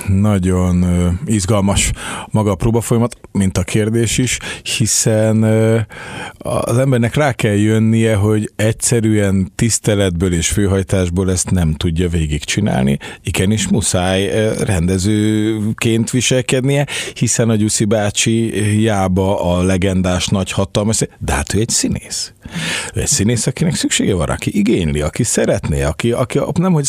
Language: Hungarian